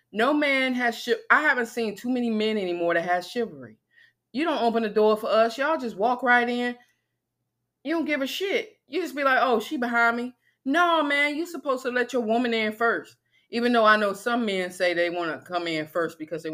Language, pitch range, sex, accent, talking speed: English, 165-245 Hz, female, American, 230 wpm